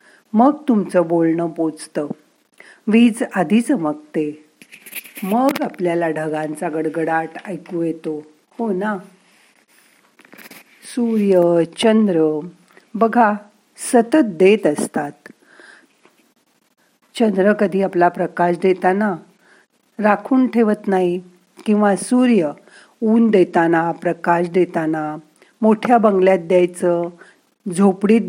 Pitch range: 170-230 Hz